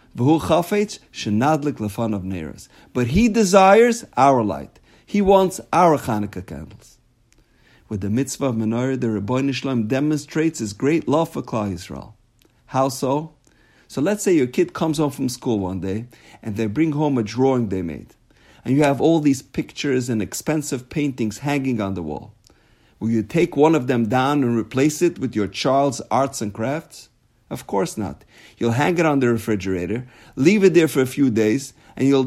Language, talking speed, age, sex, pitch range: English, 170 wpm, 50-69, male, 115-155 Hz